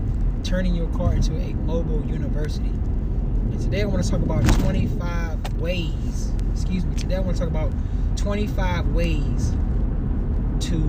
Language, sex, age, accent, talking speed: English, male, 20-39, American, 150 wpm